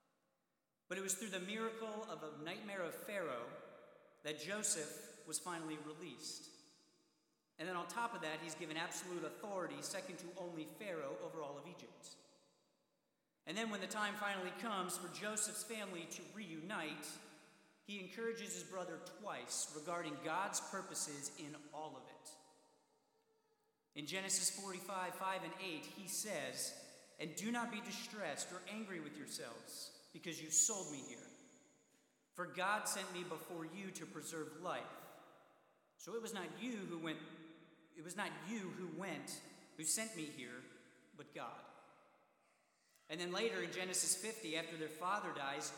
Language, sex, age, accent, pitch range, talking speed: English, male, 40-59, American, 160-200 Hz, 155 wpm